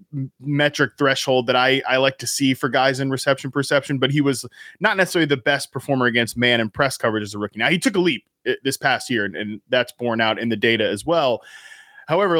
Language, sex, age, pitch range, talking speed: English, male, 20-39, 125-150 Hz, 230 wpm